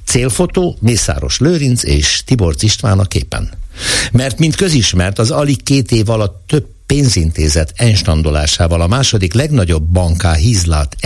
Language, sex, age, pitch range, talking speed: Hungarian, male, 60-79, 85-120 Hz, 130 wpm